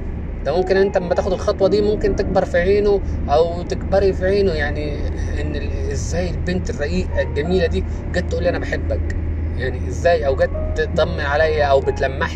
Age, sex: 20-39, male